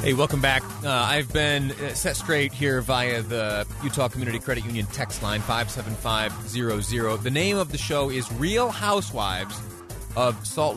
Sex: male